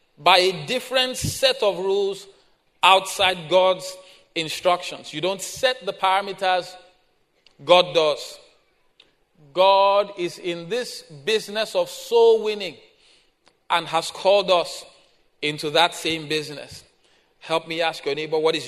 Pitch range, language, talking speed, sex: 160-205 Hz, English, 125 wpm, male